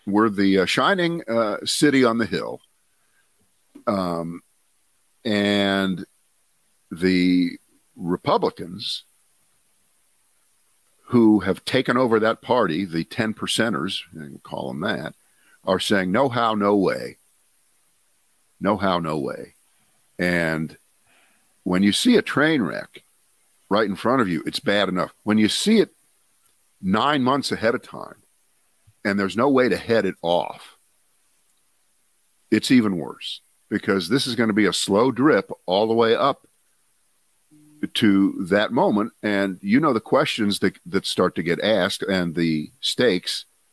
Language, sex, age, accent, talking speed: English, male, 50-69, American, 140 wpm